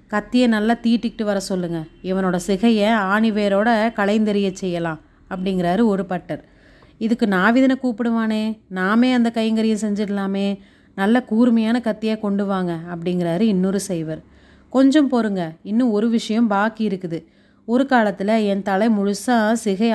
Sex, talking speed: female, 125 wpm